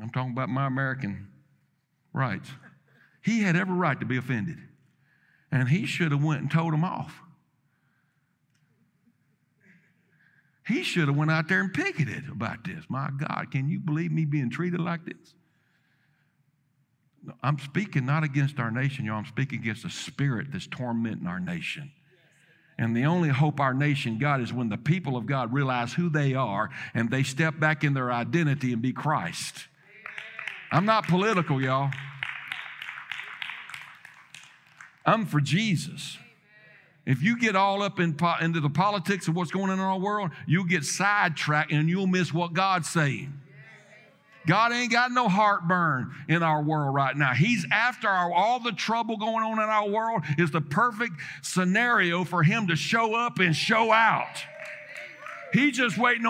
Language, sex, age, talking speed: English, male, 60-79, 165 wpm